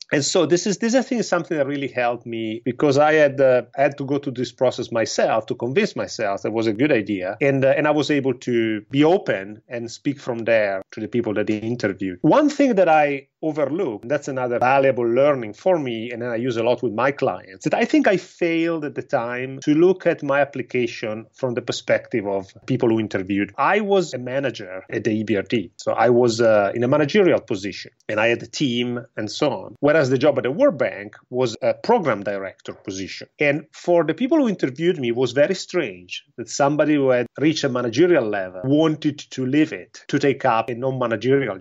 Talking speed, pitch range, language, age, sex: 225 wpm, 115-150 Hz, English, 30-49, male